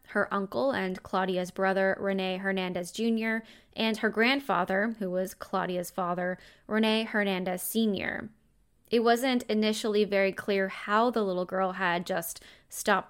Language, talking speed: English, 135 wpm